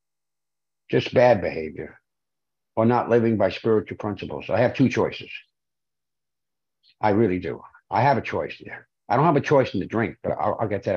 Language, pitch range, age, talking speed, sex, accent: English, 100-125 Hz, 60-79, 180 wpm, male, American